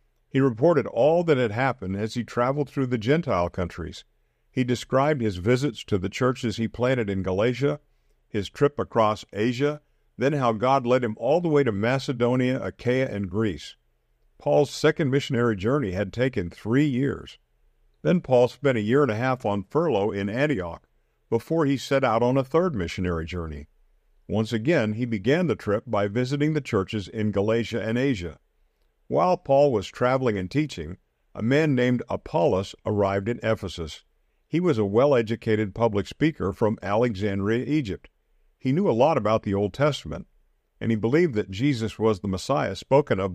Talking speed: 170 wpm